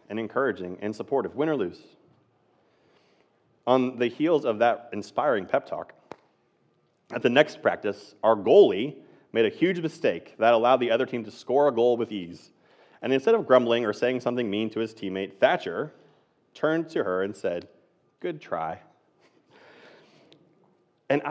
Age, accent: 30-49, American